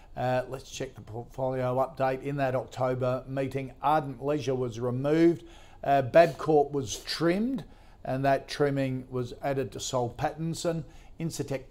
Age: 50-69